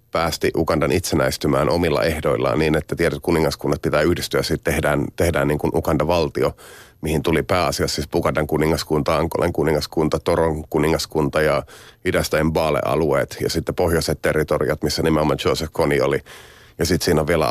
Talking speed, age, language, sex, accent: 150 wpm, 30-49, Finnish, male, native